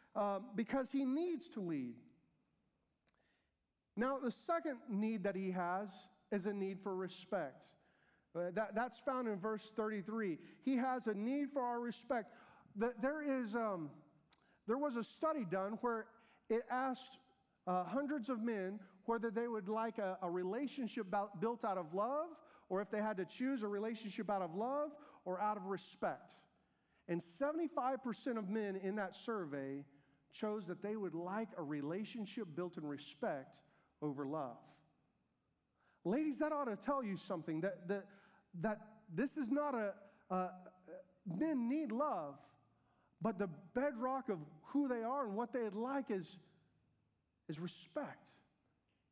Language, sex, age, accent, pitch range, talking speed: English, male, 40-59, American, 185-250 Hz, 150 wpm